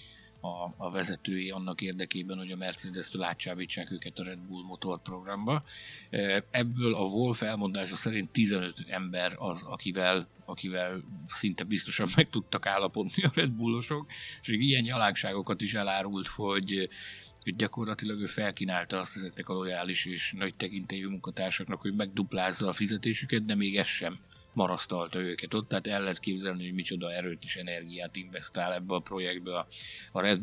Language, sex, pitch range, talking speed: Hungarian, male, 90-110 Hz, 150 wpm